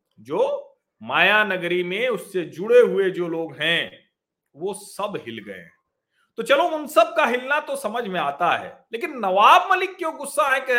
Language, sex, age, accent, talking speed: Hindi, male, 40-59, native, 180 wpm